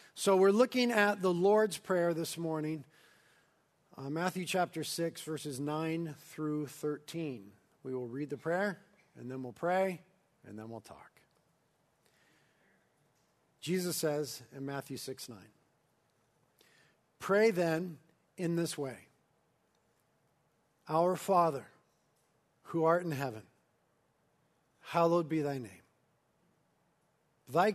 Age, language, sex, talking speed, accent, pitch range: 50-69, English, male, 110 wpm, American, 130-175 Hz